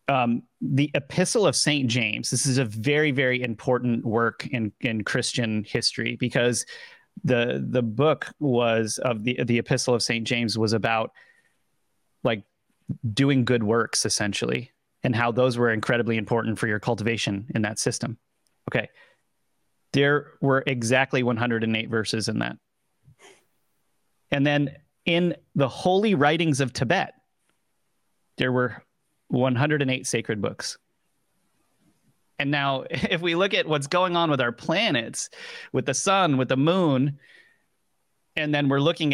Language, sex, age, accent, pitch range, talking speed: English, male, 30-49, American, 120-145 Hz, 140 wpm